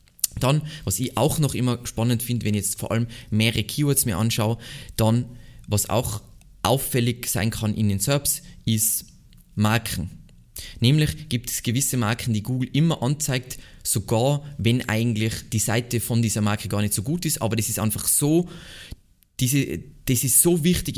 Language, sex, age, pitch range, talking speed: German, male, 20-39, 105-130 Hz, 170 wpm